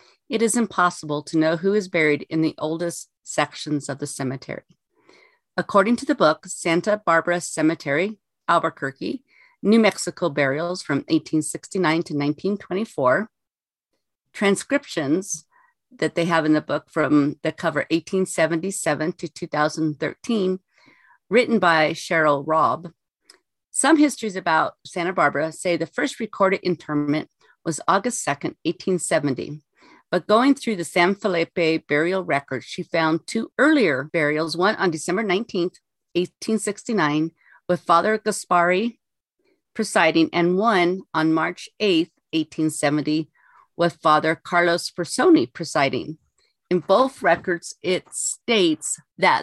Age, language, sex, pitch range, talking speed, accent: 40-59, English, female, 155-200 Hz, 120 wpm, American